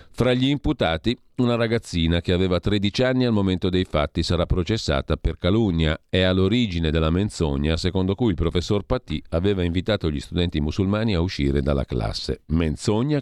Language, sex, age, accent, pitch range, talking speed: Italian, male, 50-69, native, 80-105 Hz, 165 wpm